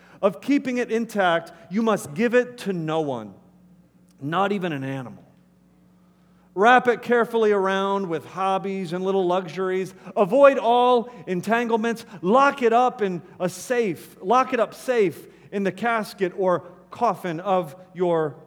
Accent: American